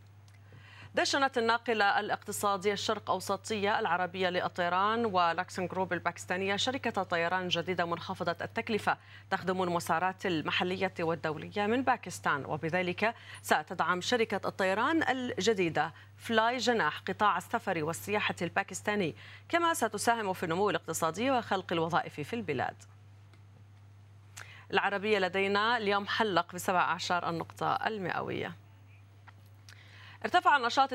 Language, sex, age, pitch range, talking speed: Arabic, female, 30-49, 170-210 Hz, 95 wpm